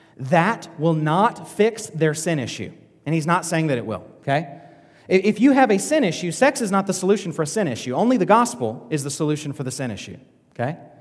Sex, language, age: male, English, 40-59